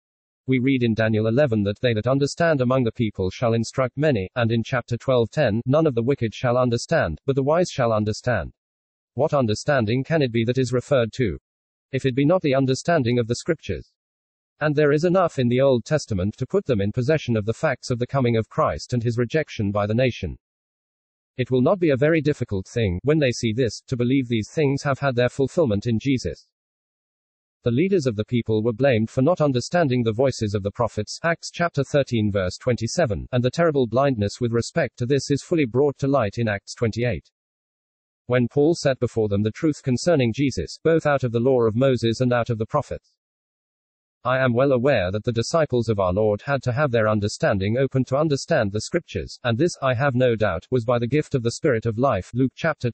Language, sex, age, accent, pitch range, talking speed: English, male, 40-59, British, 110-140 Hz, 220 wpm